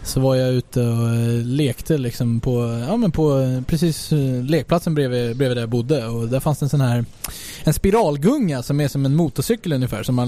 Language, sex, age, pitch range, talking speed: English, male, 20-39, 125-160 Hz, 200 wpm